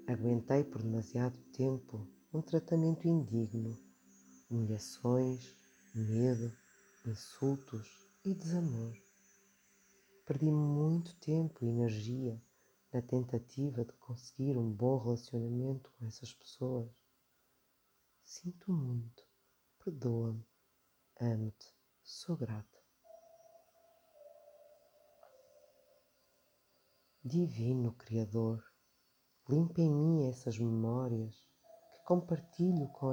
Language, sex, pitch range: Portuguese, female, 115-160 Hz